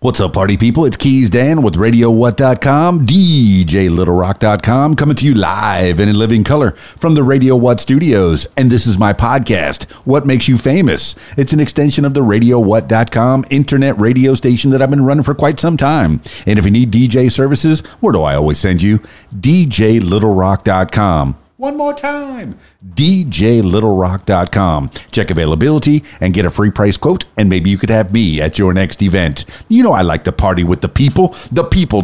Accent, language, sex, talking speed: American, English, male, 180 wpm